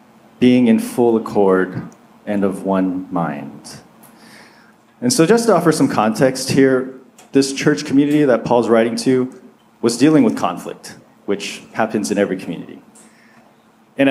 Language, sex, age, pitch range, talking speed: English, male, 30-49, 110-140 Hz, 140 wpm